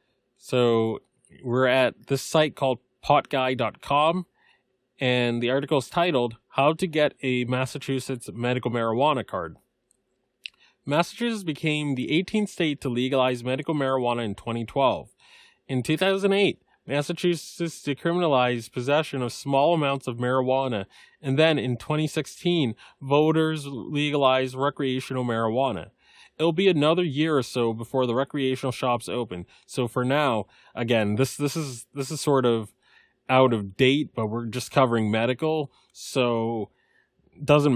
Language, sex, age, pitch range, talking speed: English, male, 20-39, 125-150 Hz, 130 wpm